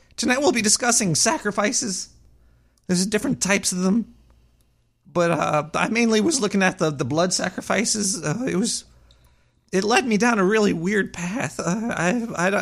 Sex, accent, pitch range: male, American, 145-210 Hz